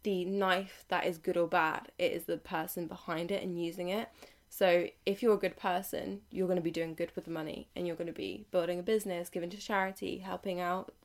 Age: 20-39